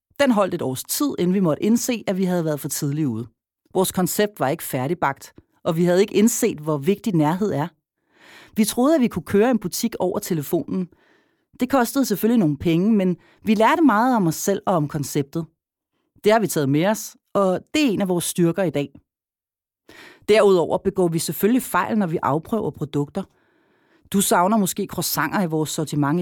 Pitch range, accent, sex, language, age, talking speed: 165-235 Hz, native, female, Danish, 30-49, 195 wpm